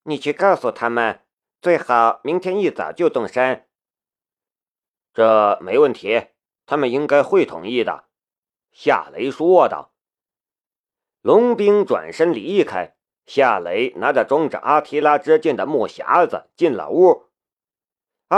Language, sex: Chinese, male